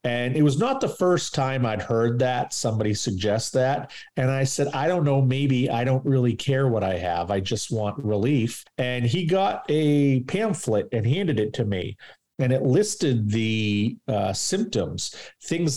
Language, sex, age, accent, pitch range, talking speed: English, male, 40-59, American, 100-135 Hz, 185 wpm